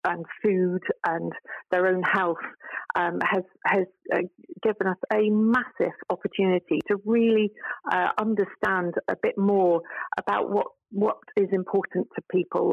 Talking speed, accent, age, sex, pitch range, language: 135 wpm, British, 40-59, female, 175-200 Hz, English